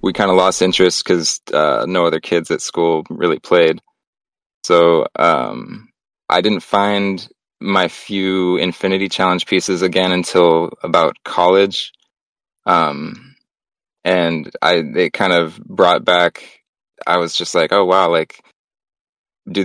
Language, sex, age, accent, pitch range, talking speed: English, male, 20-39, American, 85-95 Hz, 130 wpm